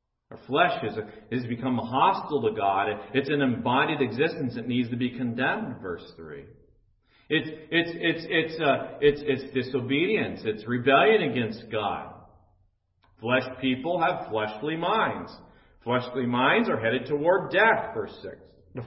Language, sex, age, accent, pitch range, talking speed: English, male, 40-59, American, 115-160 Hz, 145 wpm